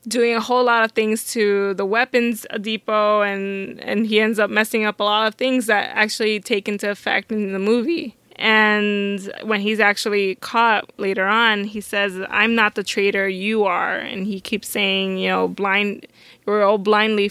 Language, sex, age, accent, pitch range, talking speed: English, female, 20-39, American, 195-215 Hz, 185 wpm